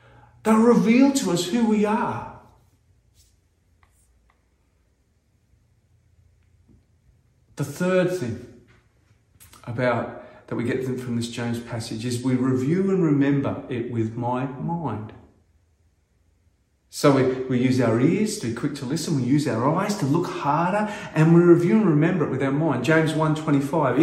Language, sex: English, male